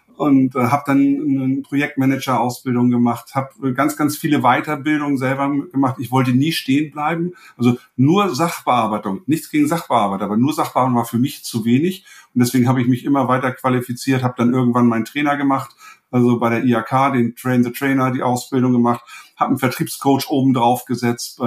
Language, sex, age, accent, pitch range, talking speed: German, male, 50-69, German, 120-135 Hz, 170 wpm